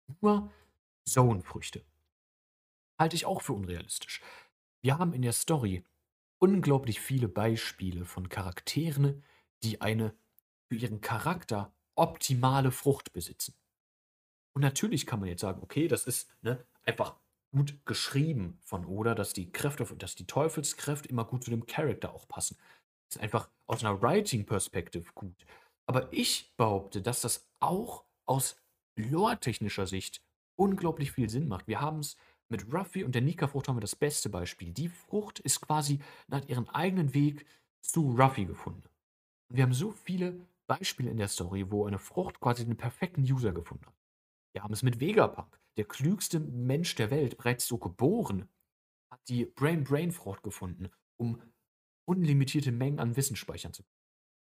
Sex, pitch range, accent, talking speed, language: male, 100-145 Hz, German, 150 wpm, German